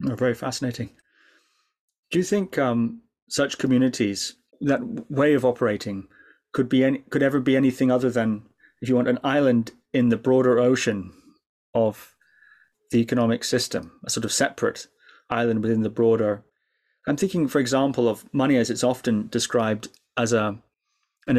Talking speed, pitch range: 155 wpm, 110-135 Hz